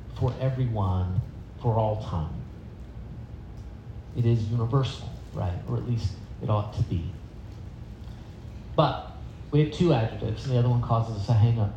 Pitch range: 110-135 Hz